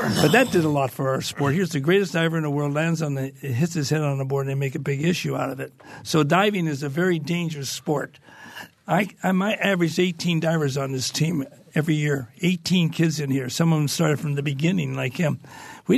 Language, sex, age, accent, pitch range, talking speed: English, male, 60-79, American, 150-185 Hz, 250 wpm